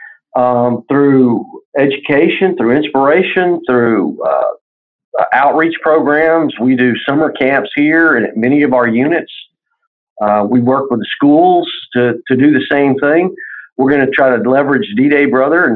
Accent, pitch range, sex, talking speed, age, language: American, 125-180 Hz, male, 155 wpm, 50-69, English